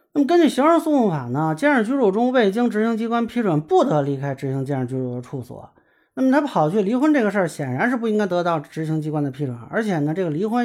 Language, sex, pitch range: Chinese, male, 145-225 Hz